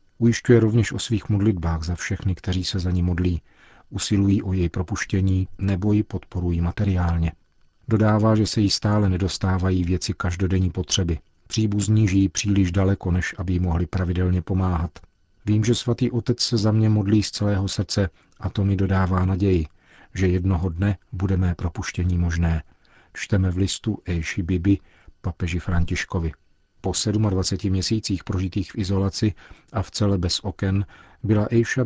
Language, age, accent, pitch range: Czech, 40-59, native, 90-105 Hz